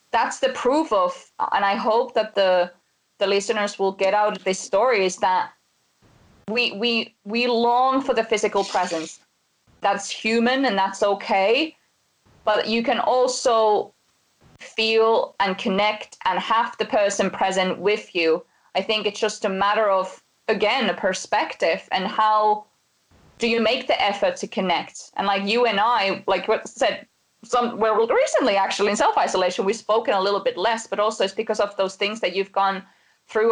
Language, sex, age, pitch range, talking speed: English, female, 20-39, 195-230 Hz, 170 wpm